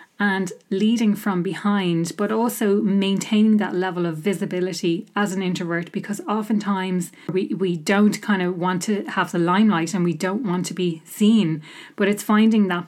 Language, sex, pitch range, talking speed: English, female, 180-205 Hz, 170 wpm